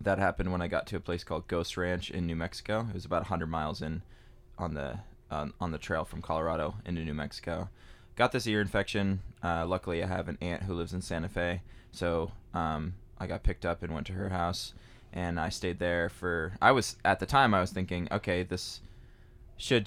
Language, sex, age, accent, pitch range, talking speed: English, male, 20-39, American, 85-100 Hz, 220 wpm